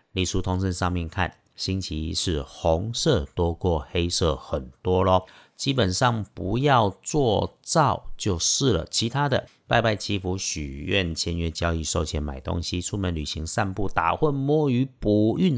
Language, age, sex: Chinese, 50-69, male